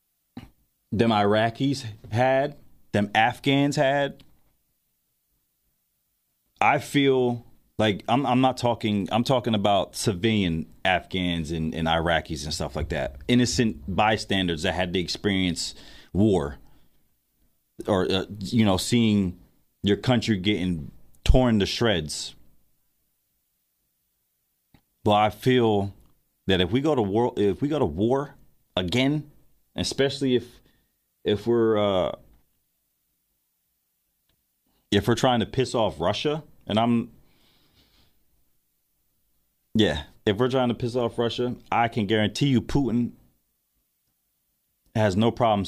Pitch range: 90-120 Hz